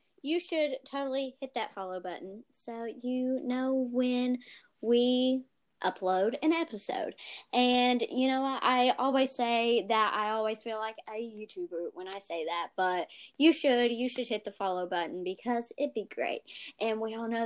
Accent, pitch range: American, 210-270 Hz